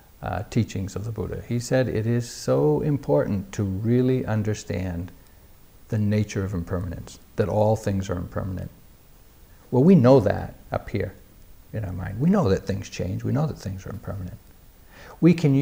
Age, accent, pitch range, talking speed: 60-79, American, 95-125 Hz, 175 wpm